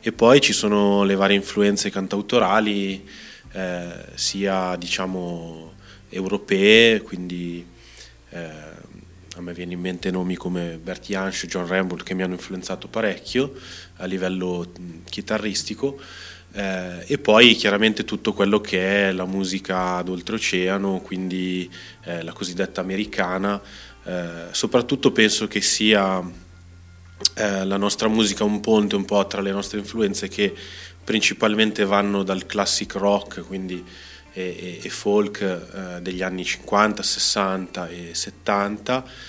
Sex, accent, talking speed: male, native, 130 wpm